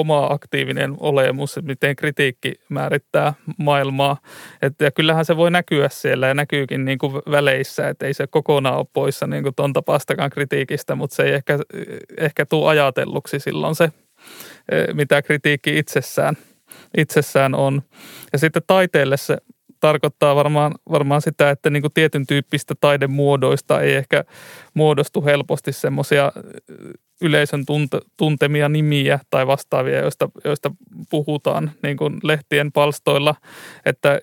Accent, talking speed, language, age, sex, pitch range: native, 125 wpm, Finnish, 30-49, male, 140-155 Hz